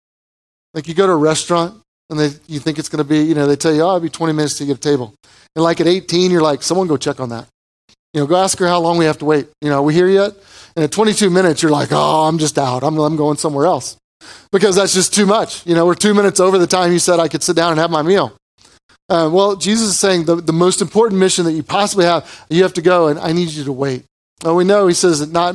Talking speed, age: 295 wpm, 30-49